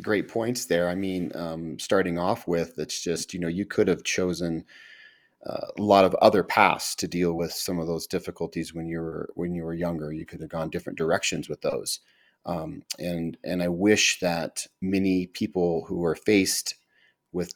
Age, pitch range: 30-49, 85-100 Hz